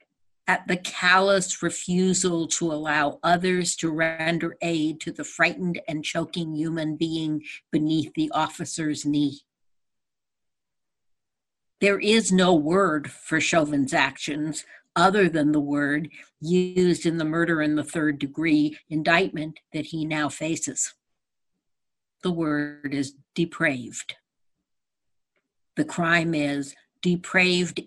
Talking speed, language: 115 wpm, English